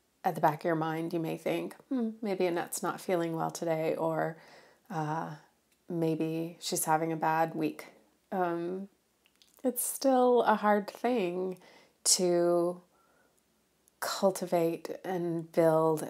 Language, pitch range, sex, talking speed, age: English, 160-185 Hz, female, 125 wpm, 30-49